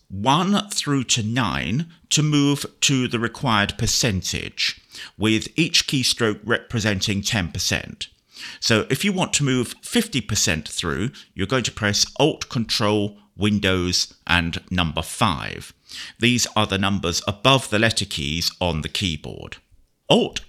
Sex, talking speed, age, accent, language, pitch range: male, 130 wpm, 50-69, British, English, 90-135 Hz